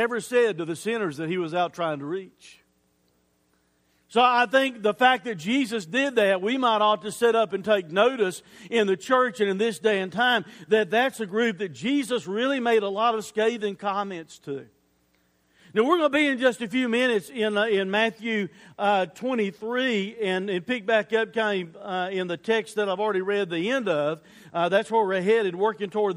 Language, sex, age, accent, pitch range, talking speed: English, male, 50-69, American, 185-235 Hz, 215 wpm